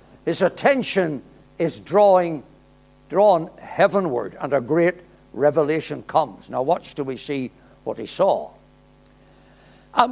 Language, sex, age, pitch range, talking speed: English, male, 60-79, 195-295 Hz, 115 wpm